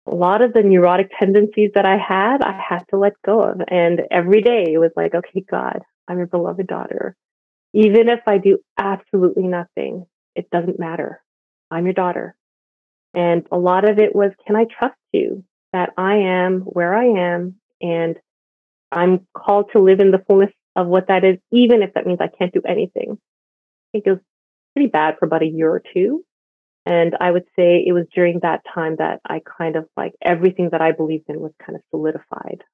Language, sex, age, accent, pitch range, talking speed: English, female, 30-49, American, 165-205 Hz, 200 wpm